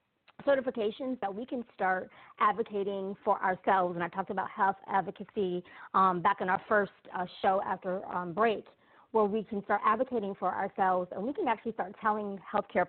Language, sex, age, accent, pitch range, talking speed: English, female, 30-49, American, 185-215 Hz, 175 wpm